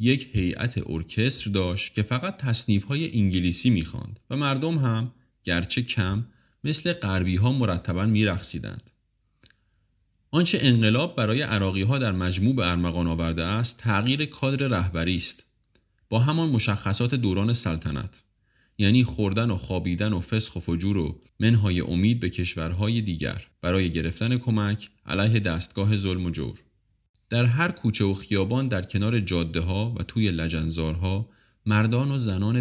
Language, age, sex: Persian, 30-49, male